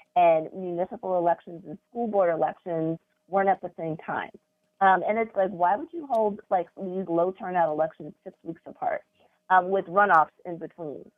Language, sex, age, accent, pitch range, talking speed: English, female, 30-49, American, 170-210 Hz, 175 wpm